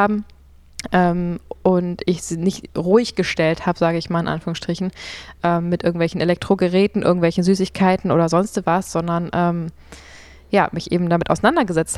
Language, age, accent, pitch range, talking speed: German, 20-39, German, 165-185 Hz, 150 wpm